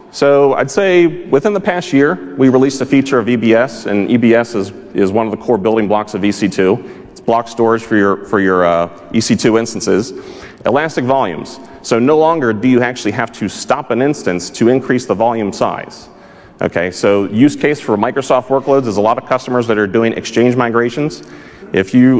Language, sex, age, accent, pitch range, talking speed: English, male, 30-49, American, 105-125 Hz, 195 wpm